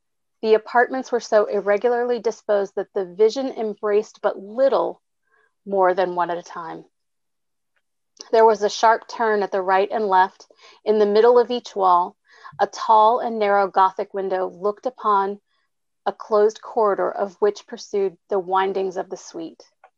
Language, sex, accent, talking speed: English, female, American, 160 wpm